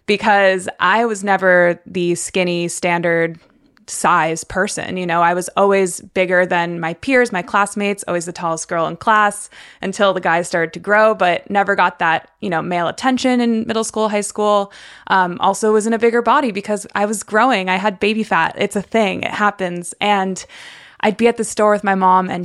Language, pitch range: English, 175-215 Hz